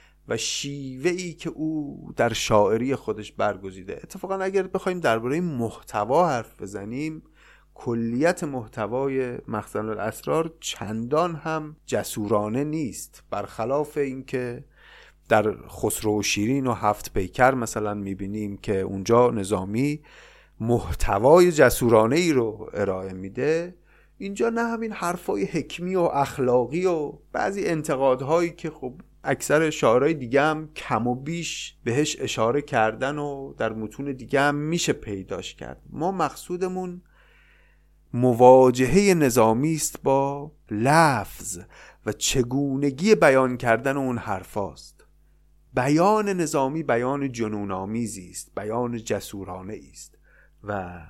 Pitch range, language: 110-155 Hz, Persian